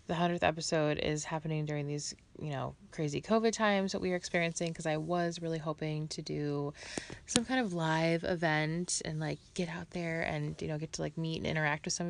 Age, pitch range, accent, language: 20-39, 150-195 Hz, American, English